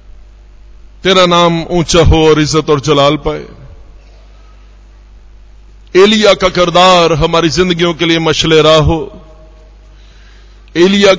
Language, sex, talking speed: Hindi, male, 105 wpm